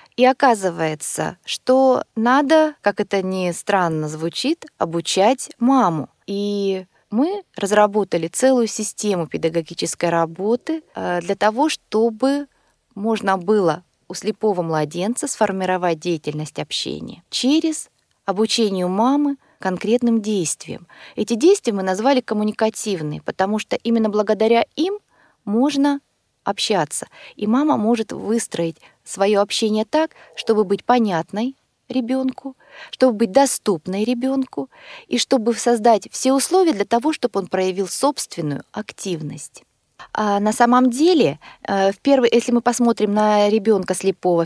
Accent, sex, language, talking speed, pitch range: native, female, Russian, 115 wpm, 190-255 Hz